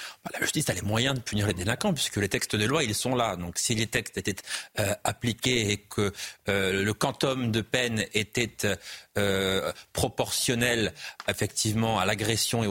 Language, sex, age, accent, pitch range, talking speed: French, male, 30-49, French, 105-135 Hz, 180 wpm